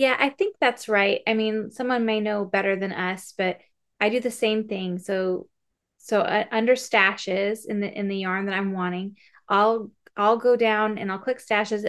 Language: English